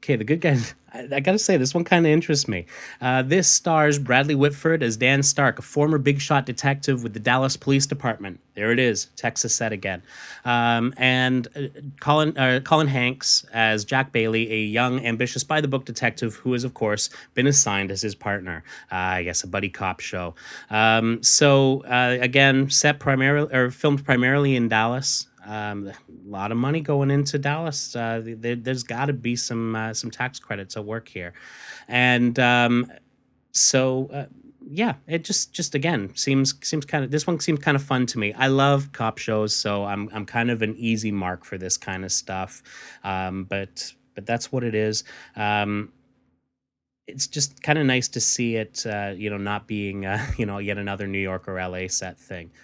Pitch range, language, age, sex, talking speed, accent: 105-140 Hz, English, 30-49, male, 195 wpm, American